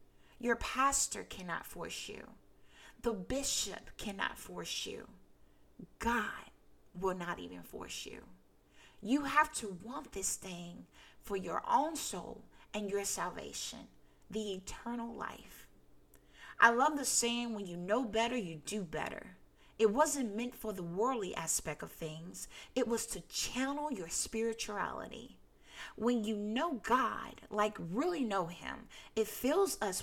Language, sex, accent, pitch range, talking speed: English, female, American, 190-260 Hz, 140 wpm